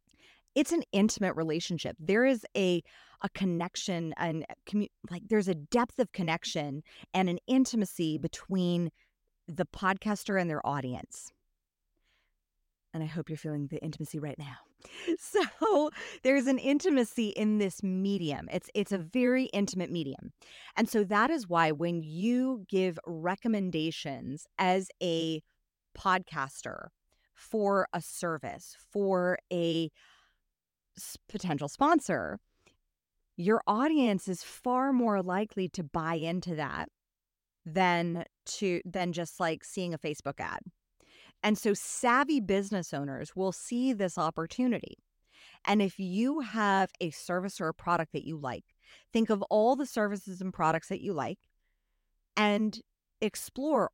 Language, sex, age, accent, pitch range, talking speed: English, female, 30-49, American, 165-215 Hz, 130 wpm